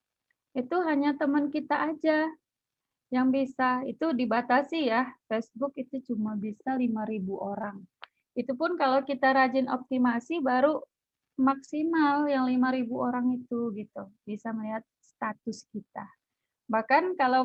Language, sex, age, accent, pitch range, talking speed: Indonesian, female, 20-39, native, 225-280 Hz, 120 wpm